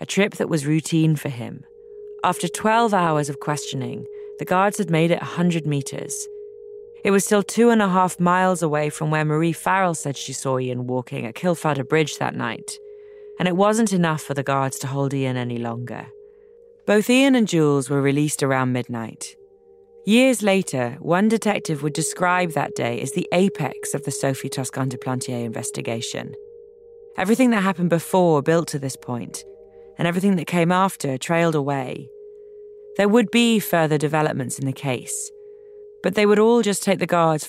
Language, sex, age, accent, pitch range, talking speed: English, female, 30-49, British, 145-230 Hz, 180 wpm